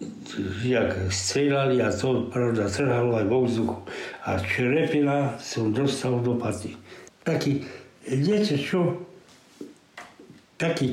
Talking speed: 105 wpm